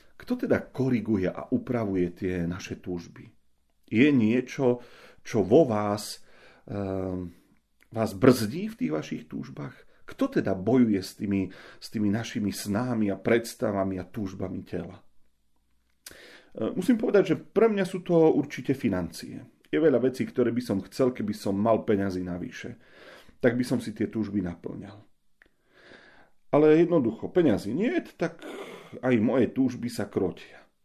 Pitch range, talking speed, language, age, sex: 100-130 Hz, 145 wpm, Slovak, 40-59, male